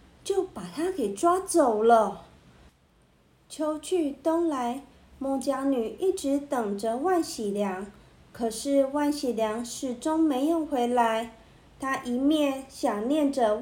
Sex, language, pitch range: female, Chinese, 235-320 Hz